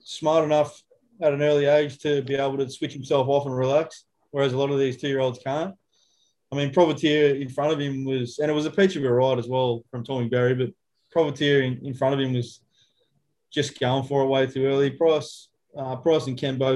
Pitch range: 130-140 Hz